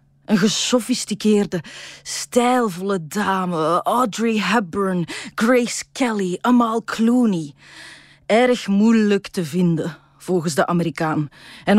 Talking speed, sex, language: 90 wpm, female, Dutch